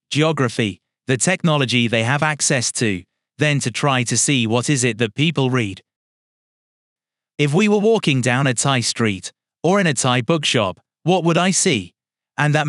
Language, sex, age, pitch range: English, male, 30-49, 120-160 Hz